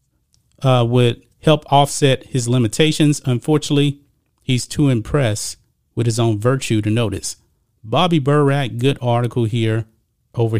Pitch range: 115-155 Hz